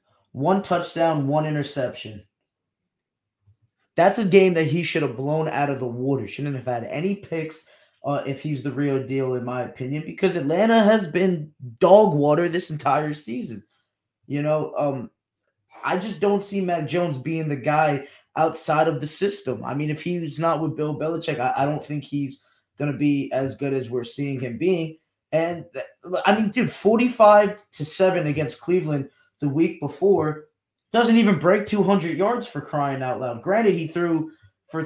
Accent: American